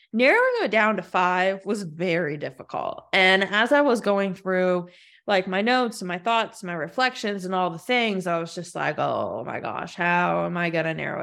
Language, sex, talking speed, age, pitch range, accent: English, female, 210 wpm, 20-39, 170-210 Hz, American